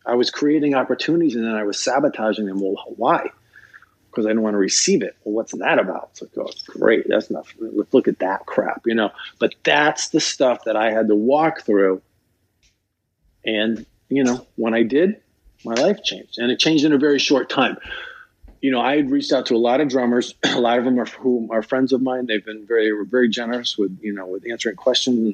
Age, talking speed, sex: 40-59, 225 wpm, male